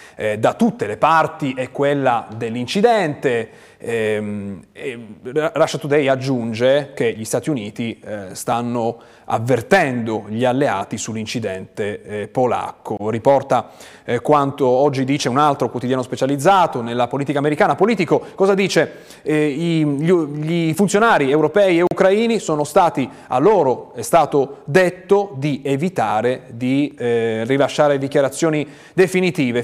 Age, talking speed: 30-49, 120 wpm